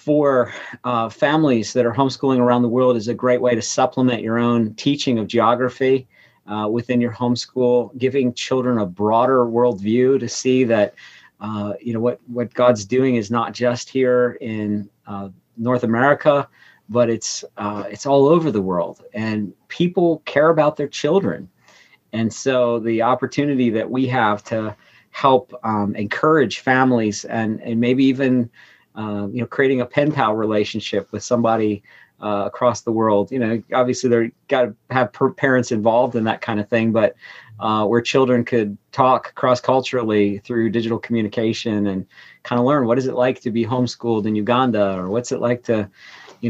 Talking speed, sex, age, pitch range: 175 wpm, male, 40-59, 110-130 Hz